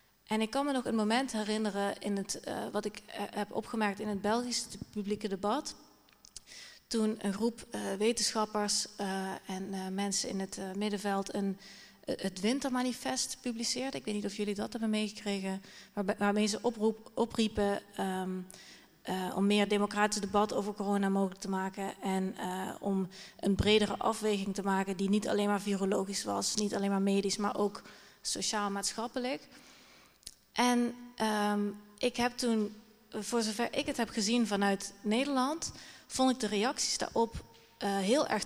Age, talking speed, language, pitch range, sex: 30-49, 165 wpm, Dutch, 200-230 Hz, female